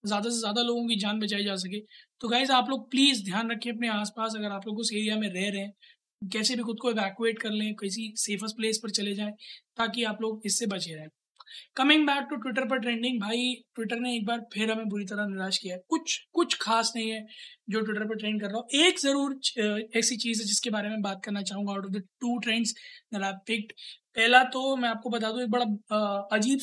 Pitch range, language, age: 205-240 Hz, Hindi, 20-39